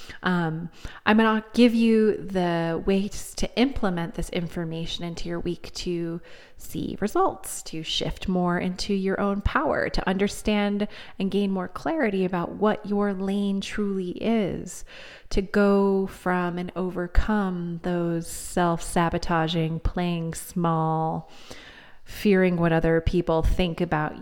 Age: 30-49